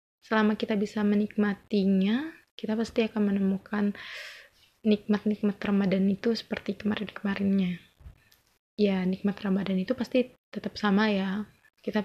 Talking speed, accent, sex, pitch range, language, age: 110 wpm, native, female, 200-230 Hz, Indonesian, 20-39